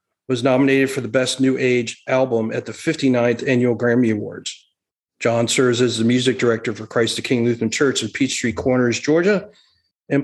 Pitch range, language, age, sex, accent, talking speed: 115-135 Hz, English, 40-59, male, American, 180 wpm